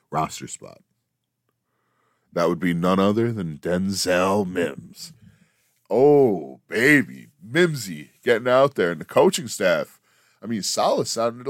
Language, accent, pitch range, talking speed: English, American, 85-115 Hz, 125 wpm